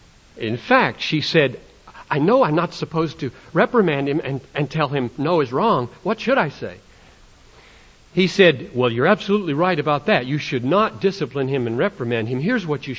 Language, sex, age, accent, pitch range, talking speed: English, male, 60-79, American, 110-175 Hz, 195 wpm